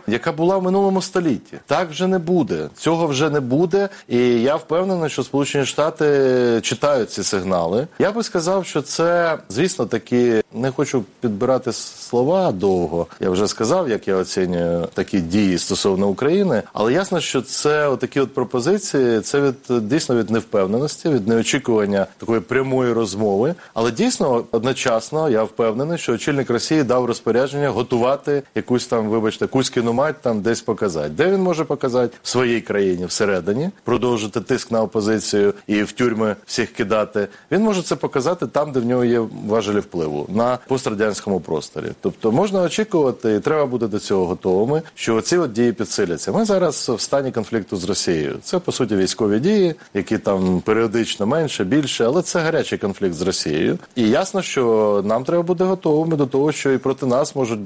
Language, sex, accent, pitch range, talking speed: Ukrainian, male, native, 110-155 Hz, 170 wpm